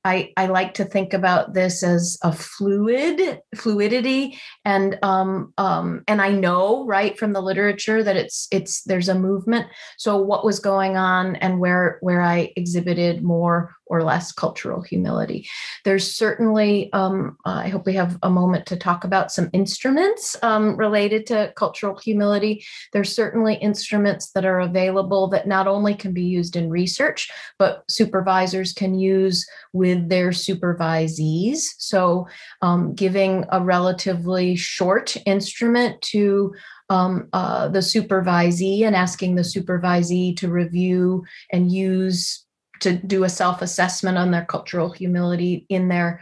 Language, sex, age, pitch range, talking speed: English, female, 30-49, 180-205 Hz, 145 wpm